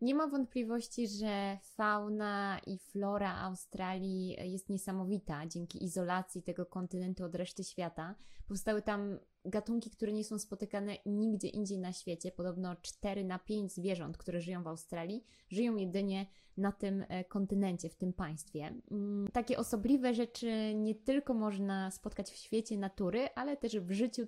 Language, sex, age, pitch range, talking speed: Polish, female, 20-39, 190-220 Hz, 145 wpm